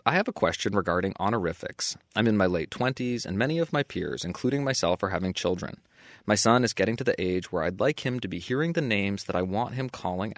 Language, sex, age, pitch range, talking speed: English, male, 20-39, 90-130 Hz, 245 wpm